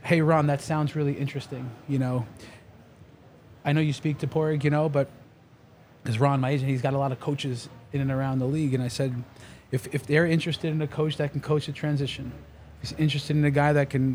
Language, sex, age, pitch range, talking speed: English, male, 30-49, 130-155 Hz, 235 wpm